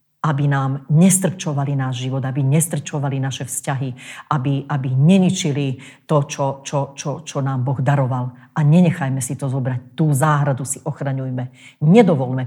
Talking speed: 145 wpm